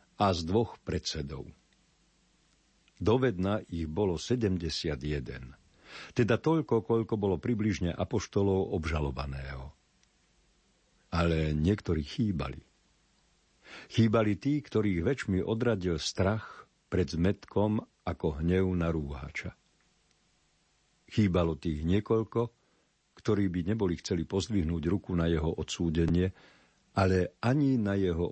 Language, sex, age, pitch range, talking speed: Slovak, male, 50-69, 80-110 Hz, 95 wpm